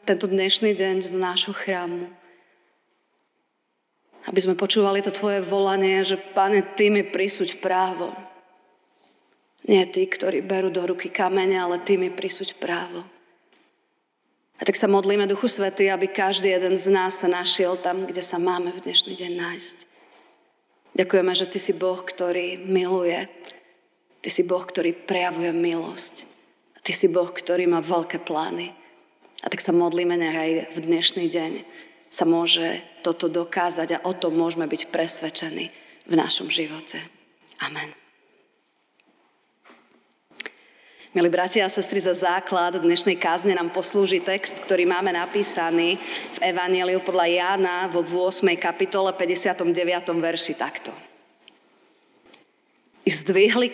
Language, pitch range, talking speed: Slovak, 175-195 Hz, 130 wpm